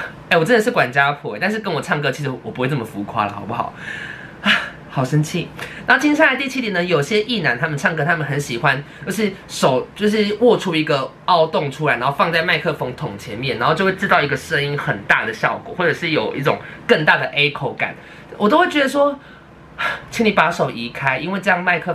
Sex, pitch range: male, 145-205 Hz